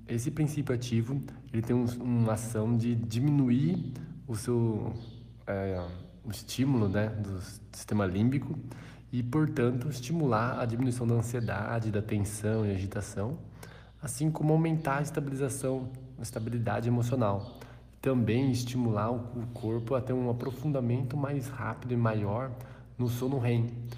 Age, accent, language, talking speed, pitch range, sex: 20-39, Brazilian, Portuguese, 125 wpm, 110-130 Hz, male